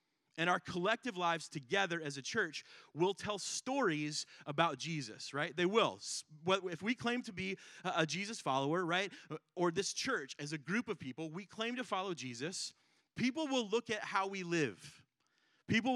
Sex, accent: male, American